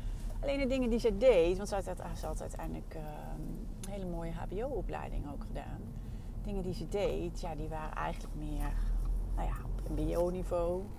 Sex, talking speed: female, 160 wpm